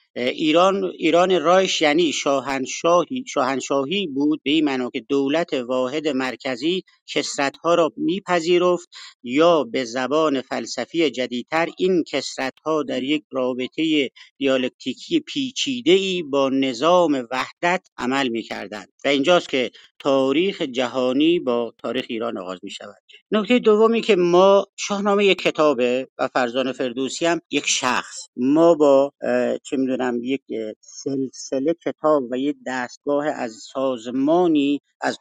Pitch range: 130-175 Hz